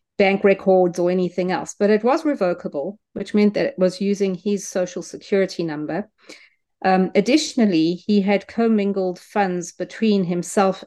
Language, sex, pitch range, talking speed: English, female, 175-205 Hz, 150 wpm